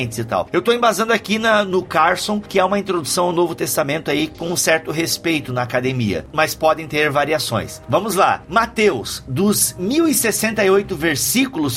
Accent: Brazilian